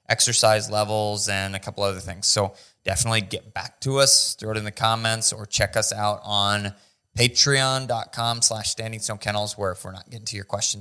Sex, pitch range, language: male, 100-120 Hz, English